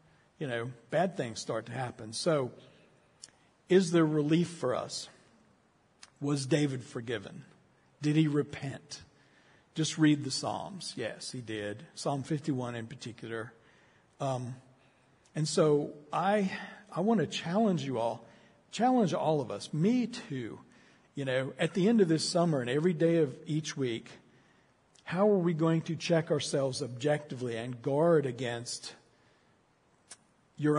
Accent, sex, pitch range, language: American, male, 130-170 Hz, English